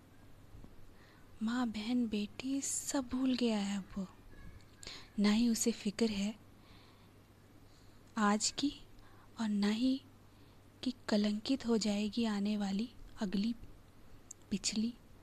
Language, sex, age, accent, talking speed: Hindi, female, 20-39, native, 100 wpm